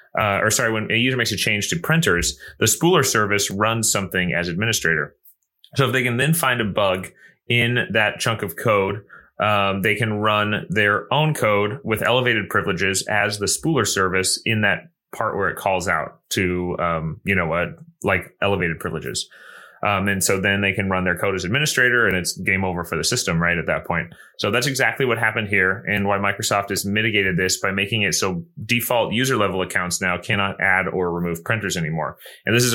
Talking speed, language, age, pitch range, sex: 205 wpm, English, 30-49, 95-115 Hz, male